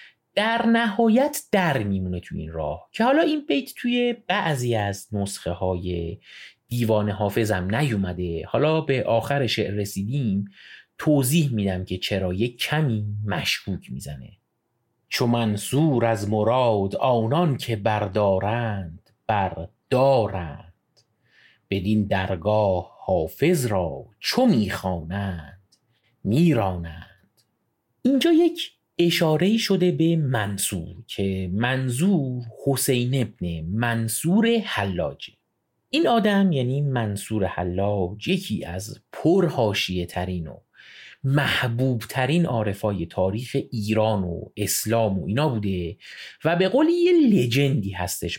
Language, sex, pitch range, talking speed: Persian, male, 100-145 Hz, 105 wpm